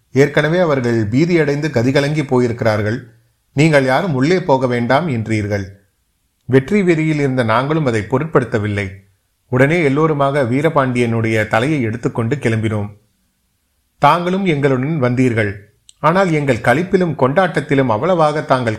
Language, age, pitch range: Tamil, 30-49, 110-140 Hz